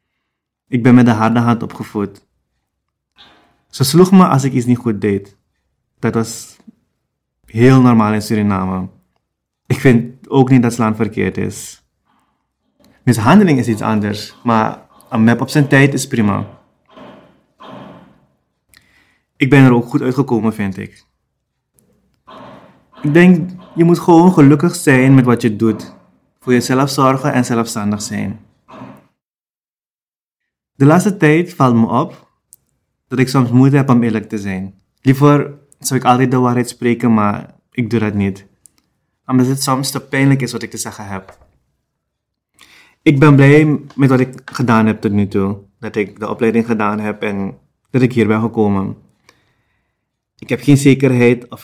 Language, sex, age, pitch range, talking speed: Dutch, male, 20-39, 105-135 Hz, 155 wpm